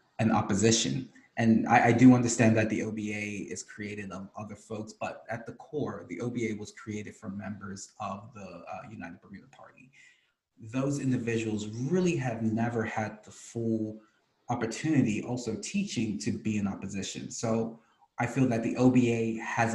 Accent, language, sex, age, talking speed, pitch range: American, English, male, 20-39, 160 wpm, 105-125 Hz